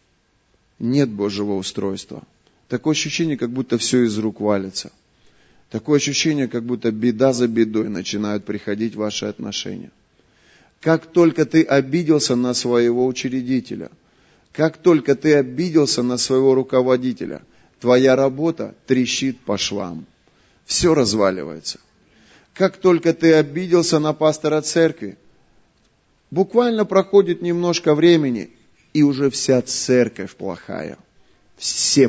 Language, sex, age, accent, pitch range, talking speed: Russian, male, 30-49, native, 120-155 Hz, 110 wpm